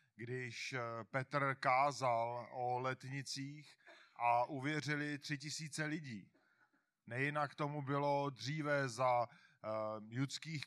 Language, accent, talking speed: Czech, native, 90 wpm